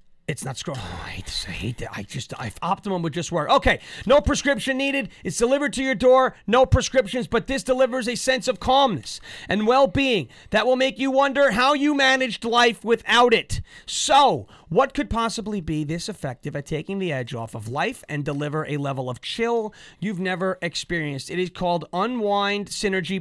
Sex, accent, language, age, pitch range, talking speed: male, American, English, 30-49, 165-230 Hz, 195 wpm